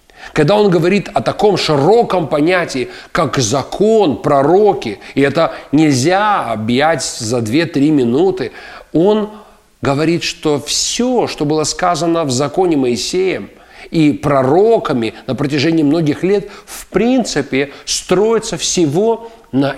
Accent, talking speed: native, 115 wpm